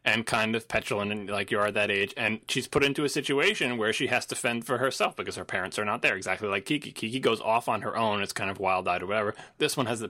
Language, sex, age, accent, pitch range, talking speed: English, male, 20-39, American, 110-135 Hz, 295 wpm